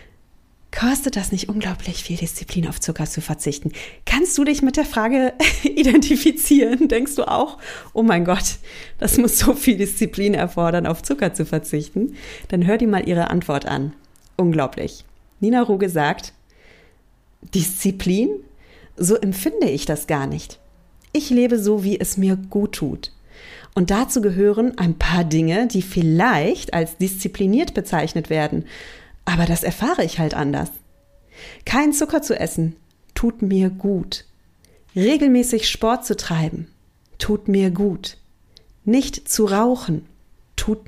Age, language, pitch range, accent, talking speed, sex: 40-59, German, 165-230 Hz, German, 140 wpm, female